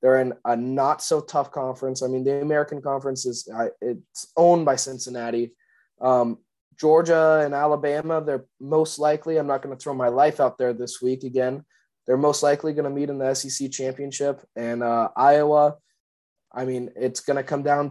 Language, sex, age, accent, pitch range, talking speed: English, male, 20-39, American, 130-150 Hz, 185 wpm